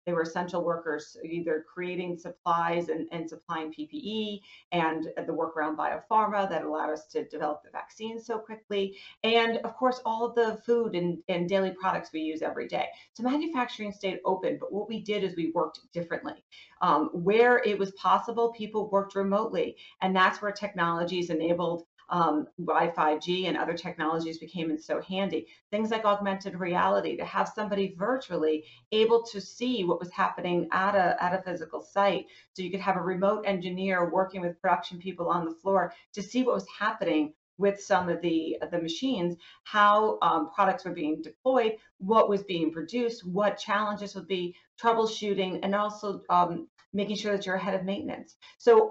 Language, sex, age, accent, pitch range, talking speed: English, female, 40-59, American, 170-210 Hz, 180 wpm